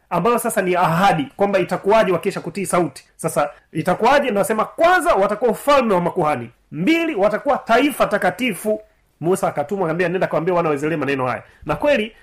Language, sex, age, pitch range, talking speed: Swahili, male, 30-49, 180-230 Hz, 145 wpm